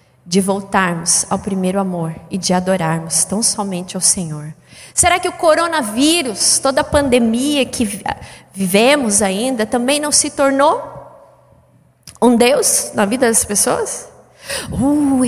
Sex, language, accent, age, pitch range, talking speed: female, Portuguese, Brazilian, 20-39, 195-275 Hz, 130 wpm